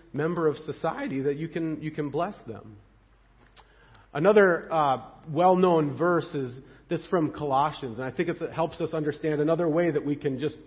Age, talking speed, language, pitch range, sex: 40-59, 175 wpm, English, 135-185 Hz, male